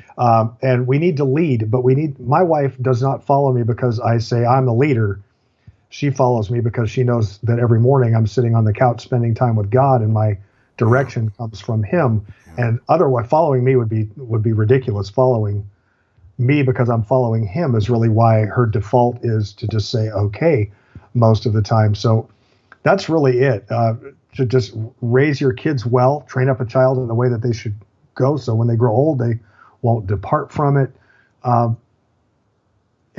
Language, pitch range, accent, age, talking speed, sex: English, 110-130 Hz, American, 50-69, 195 wpm, male